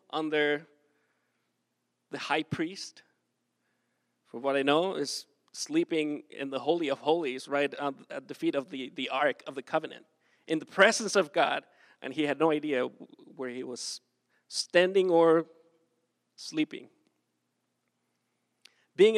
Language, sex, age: English, male, 30-49